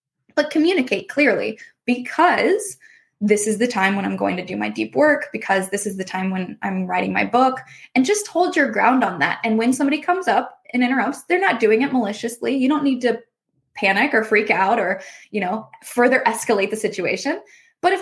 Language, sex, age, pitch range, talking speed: English, female, 10-29, 195-260 Hz, 205 wpm